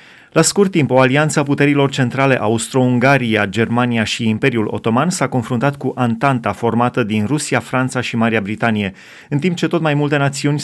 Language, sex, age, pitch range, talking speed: Romanian, male, 30-49, 115-145 Hz, 175 wpm